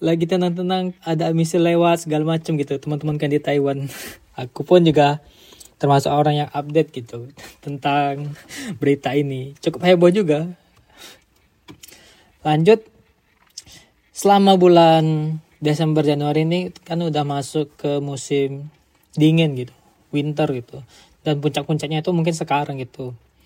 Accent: native